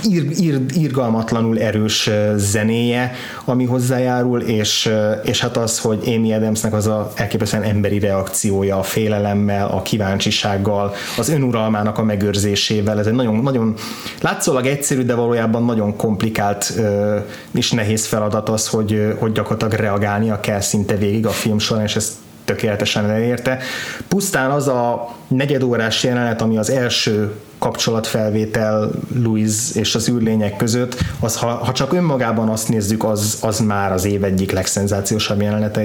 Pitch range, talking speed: 105-120 Hz, 140 wpm